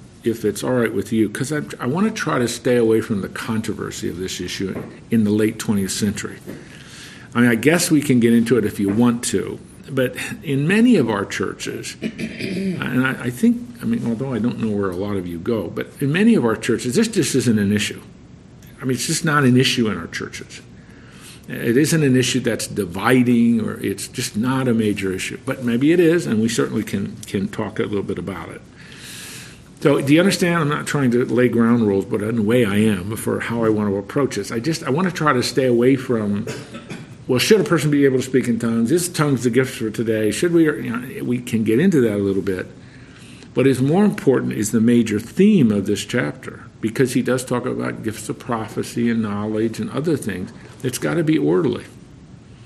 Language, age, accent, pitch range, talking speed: English, 50-69, American, 110-145 Hz, 230 wpm